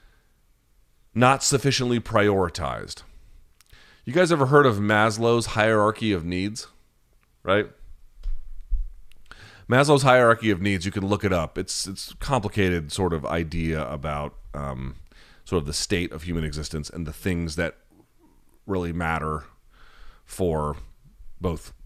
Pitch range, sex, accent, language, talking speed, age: 75-110 Hz, male, American, English, 125 wpm, 30-49